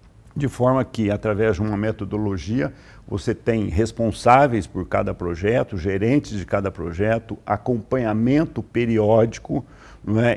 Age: 60-79